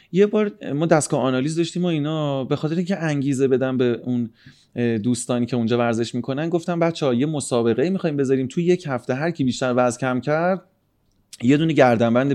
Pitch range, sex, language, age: 115-160 Hz, male, Persian, 30-49